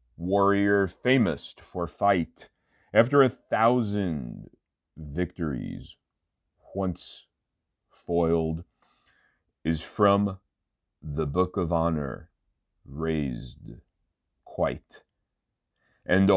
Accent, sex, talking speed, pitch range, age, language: American, male, 70 wpm, 80-95 Hz, 40-59, English